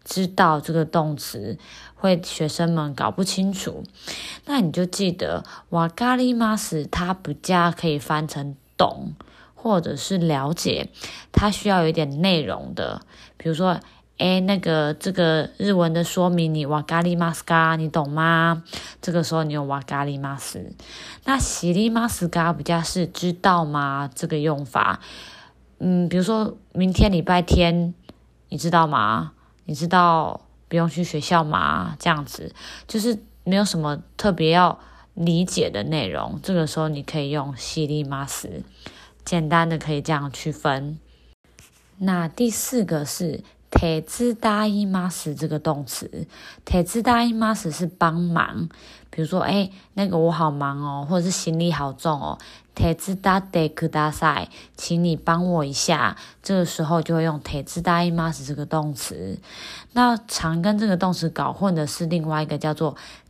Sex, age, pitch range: female, 20-39, 155-185 Hz